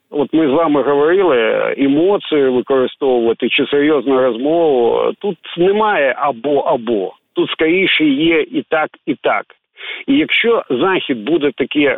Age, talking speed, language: 50-69, 125 wpm, Ukrainian